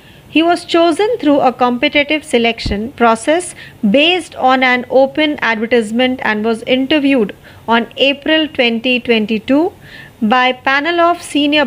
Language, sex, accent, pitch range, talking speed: Marathi, female, native, 230-285 Hz, 125 wpm